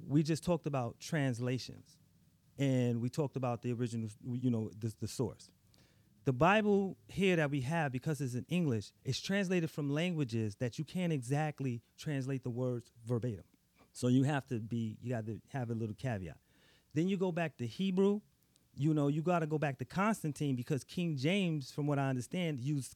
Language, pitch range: English, 120-160 Hz